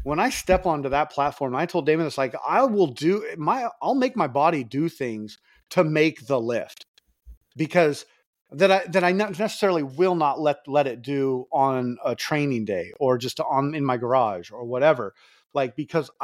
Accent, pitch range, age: American, 135-175 Hz, 30-49